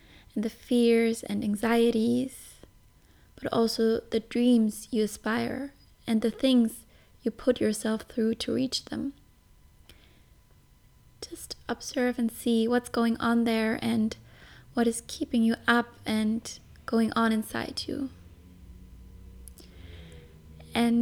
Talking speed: 115 wpm